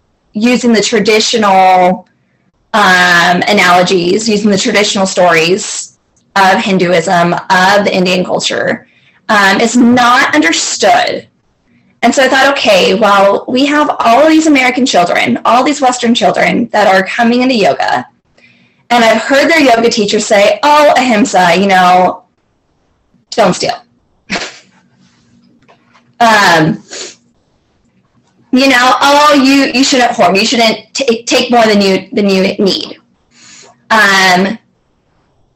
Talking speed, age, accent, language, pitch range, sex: 125 wpm, 20-39, American, English, 195-250 Hz, female